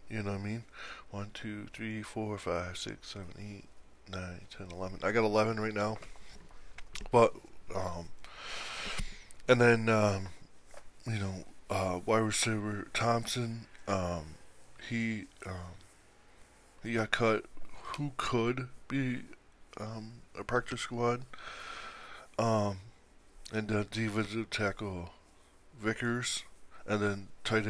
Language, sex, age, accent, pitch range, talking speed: English, male, 20-39, American, 95-110 Hz, 115 wpm